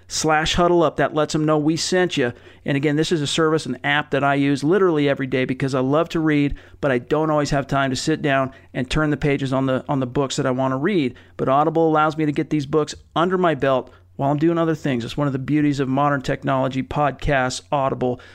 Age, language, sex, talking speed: 40-59, English, male, 255 wpm